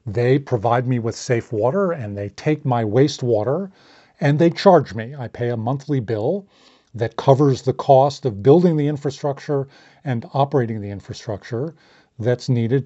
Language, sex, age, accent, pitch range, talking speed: English, male, 40-59, American, 115-150 Hz, 160 wpm